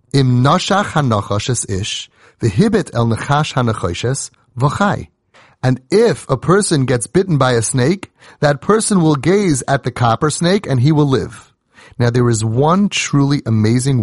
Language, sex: English, male